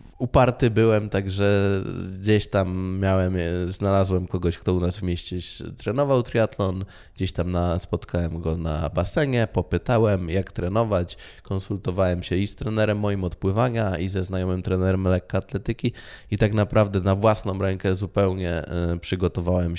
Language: Polish